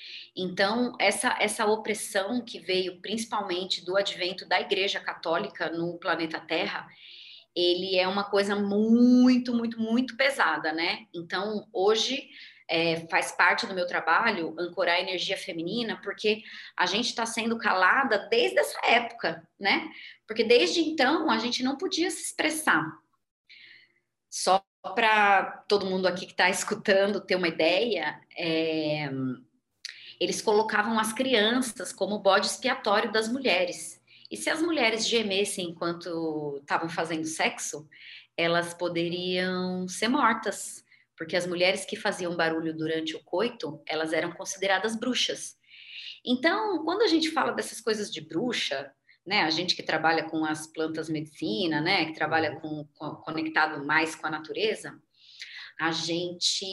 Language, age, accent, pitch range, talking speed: Portuguese, 20-39, Brazilian, 170-225 Hz, 140 wpm